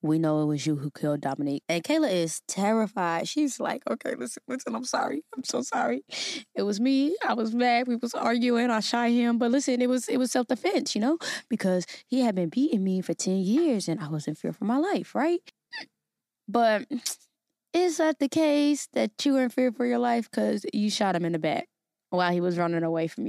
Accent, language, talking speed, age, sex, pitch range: American, English, 220 wpm, 20-39, female, 185-255 Hz